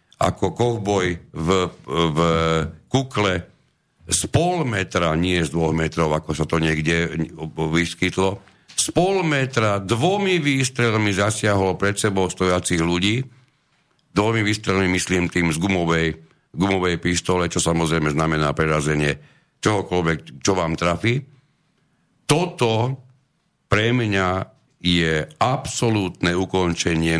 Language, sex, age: Slovak, male, 60-79